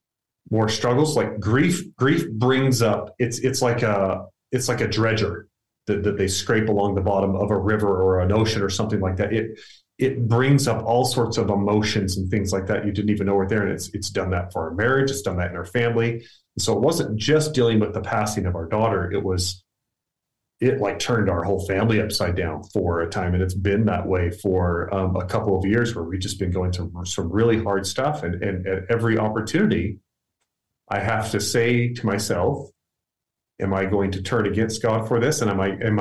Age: 30-49